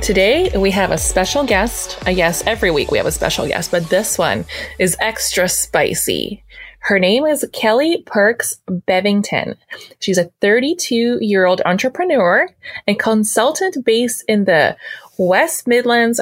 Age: 20-39